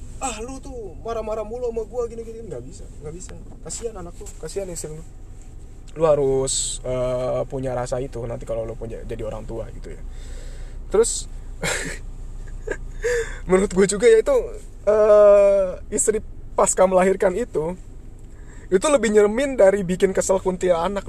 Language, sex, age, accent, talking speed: Indonesian, male, 20-39, native, 140 wpm